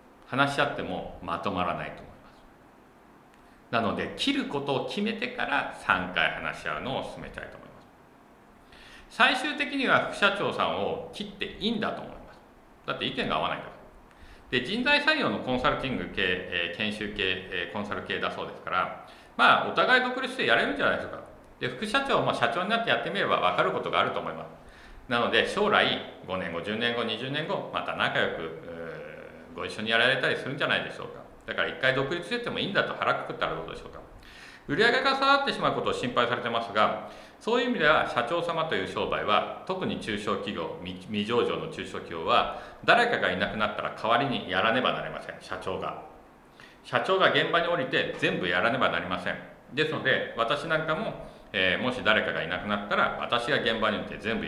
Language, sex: Japanese, male